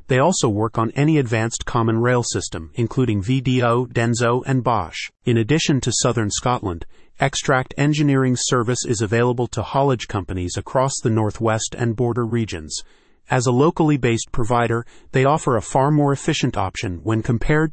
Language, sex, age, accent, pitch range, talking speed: English, male, 30-49, American, 110-135 Hz, 160 wpm